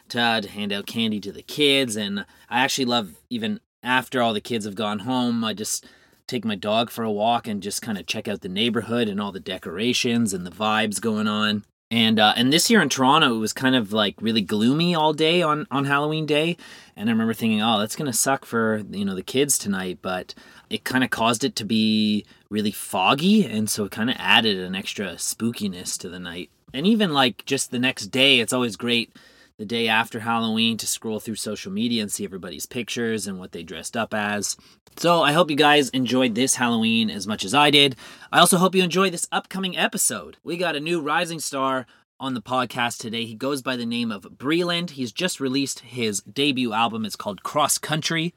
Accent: American